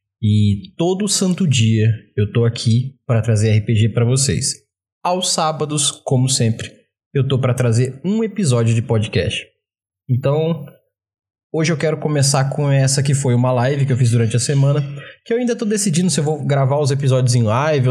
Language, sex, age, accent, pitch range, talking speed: Portuguese, male, 20-39, Brazilian, 120-150 Hz, 180 wpm